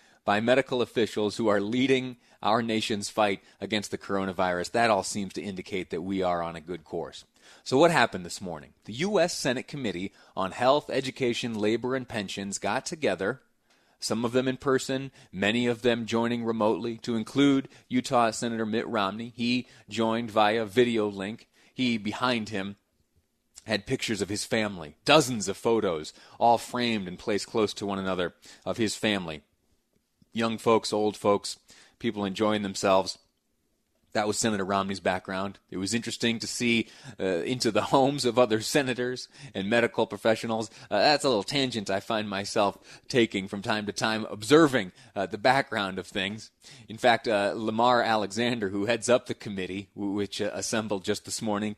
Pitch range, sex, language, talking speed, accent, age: 100-120 Hz, male, English, 170 wpm, American, 30-49